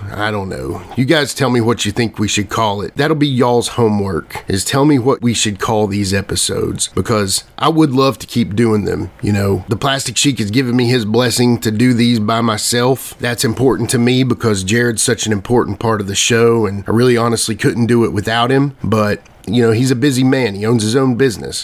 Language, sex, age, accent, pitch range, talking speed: English, male, 30-49, American, 105-125 Hz, 235 wpm